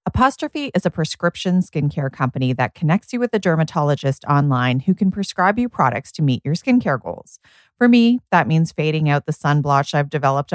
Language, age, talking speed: English, 30-49, 190 wpm